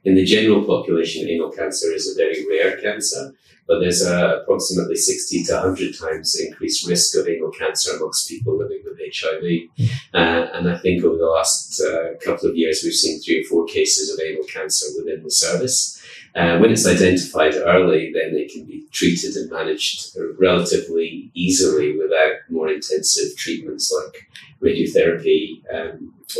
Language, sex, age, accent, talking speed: English, male, 30-49, British, 165 wpm